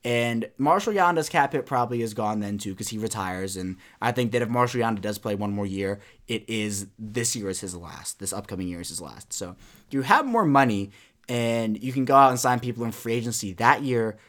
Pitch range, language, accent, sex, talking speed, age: 105-135 Hz, English, American, male, 235 wpm, 20-39